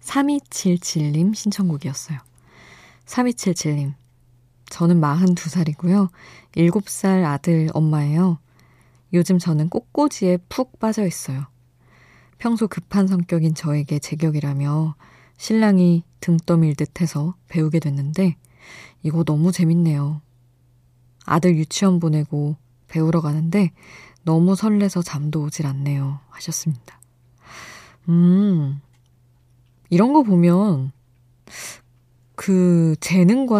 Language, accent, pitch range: Korean, native, 130-180 Hz